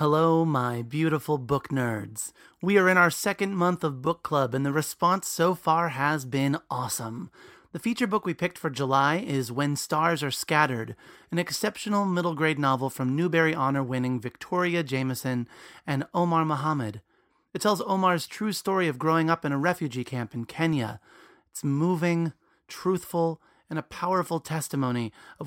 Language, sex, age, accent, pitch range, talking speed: English, male, 30-49, American, 135-175 Hz, 165 wpm